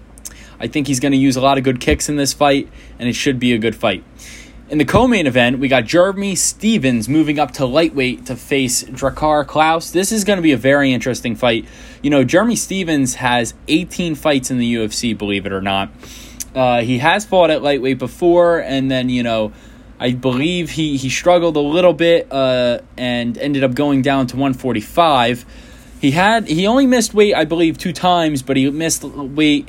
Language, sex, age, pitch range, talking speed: English, male, 10-29, 125-160 Hz, 205 wpm